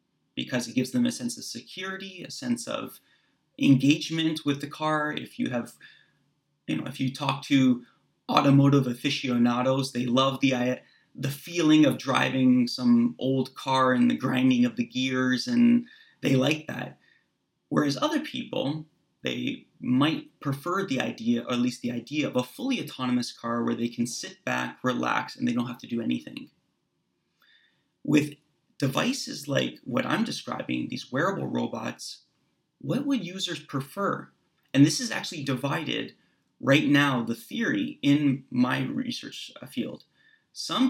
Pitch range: 125-190 Hz